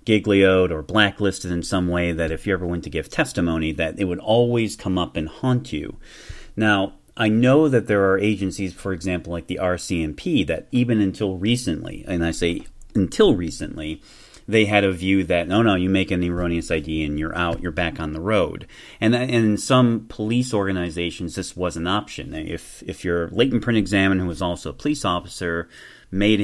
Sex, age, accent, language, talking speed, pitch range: male, 30-49, American, English, 195 wpm, 85-110 Hz